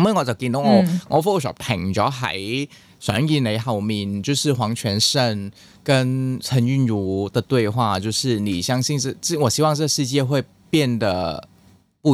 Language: Chinese